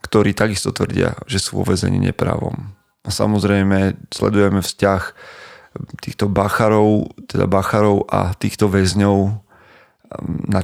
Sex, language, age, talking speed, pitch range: male, Slovak, 30-49, 115 wpm, 95-110 Hz